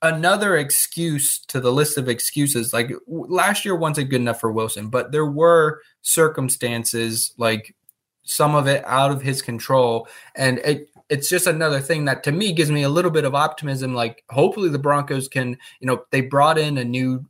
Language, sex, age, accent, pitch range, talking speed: English, male, 20-39, American, 120-145 Hz, 195 wpm